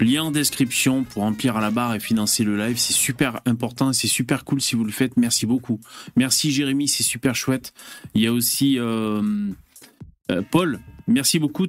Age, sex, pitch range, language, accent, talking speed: 30-49, male, 115-160 Hz, French, French, 195 wpm